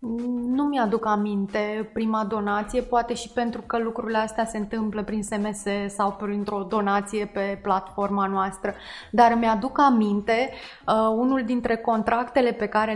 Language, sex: Romanian, female